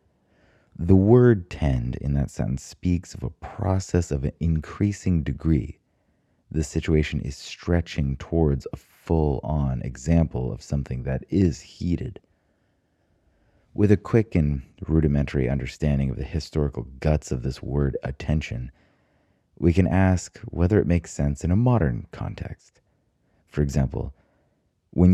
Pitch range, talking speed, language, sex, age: 70-90 Hz, 130 wpm, English, male, 30-49